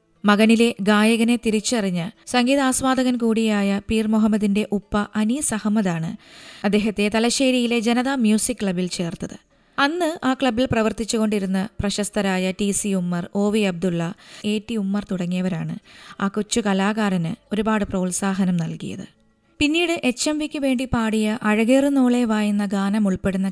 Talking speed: 115 wpm